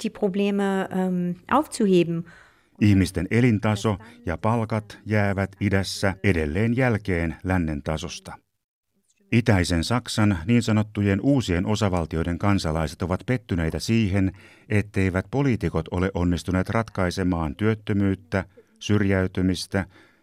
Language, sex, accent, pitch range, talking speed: Finnish, male, native, 90-115 Hz, 80 wpm